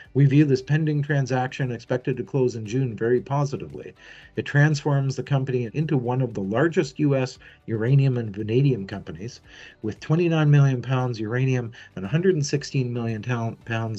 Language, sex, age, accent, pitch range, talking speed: English, male, 50-69, American, 115-140 Hz, 145 wpm